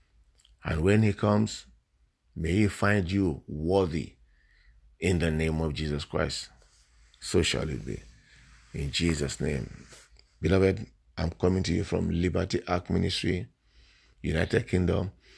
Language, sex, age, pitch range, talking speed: English, male, 50-69, 75-95 Hz, 130 wpm